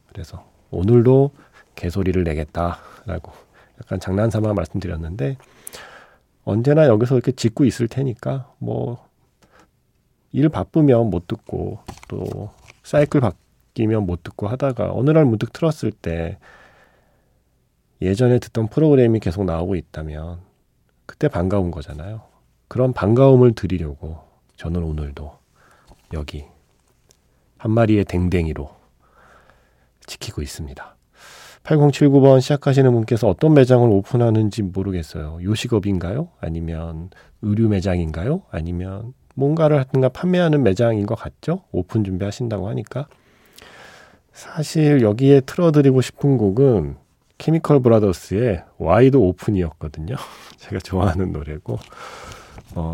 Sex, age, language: male, 40-59, Korean